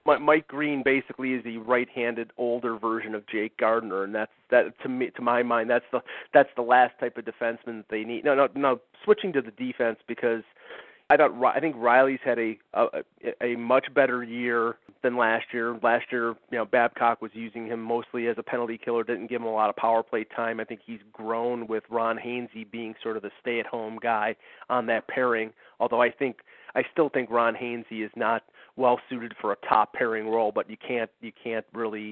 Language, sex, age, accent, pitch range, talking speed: English, male, 30-49, American, 115-125 Hz, 215 wpm